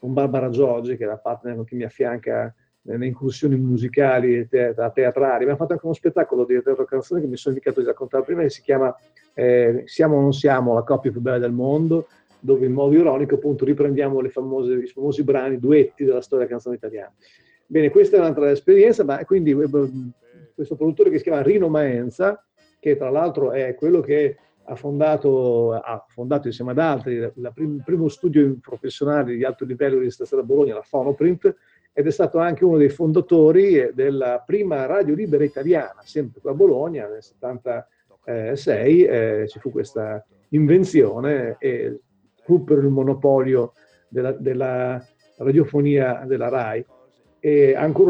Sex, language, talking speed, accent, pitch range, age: male, Italian, 170 wpm, native, 125-180 Hz, 40-59